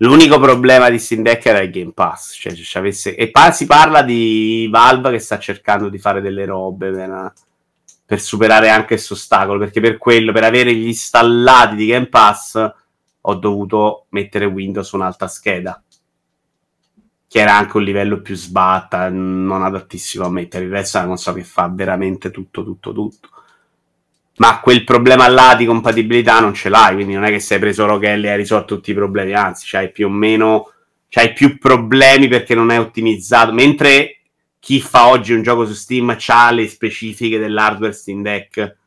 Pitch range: 100-115 Hz